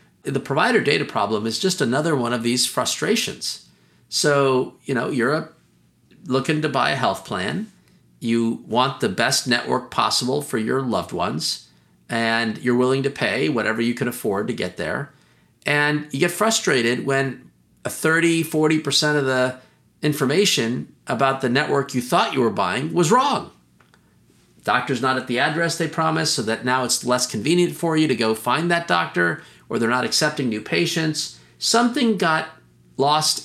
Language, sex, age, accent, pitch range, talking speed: English, male, 40-59, American, 115-160 Hz, 165 wpm